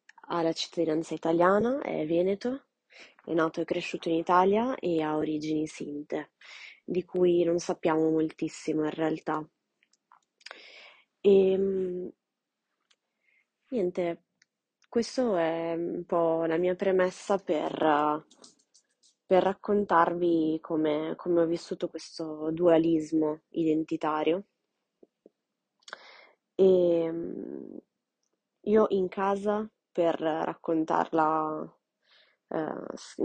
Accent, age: native, 20-39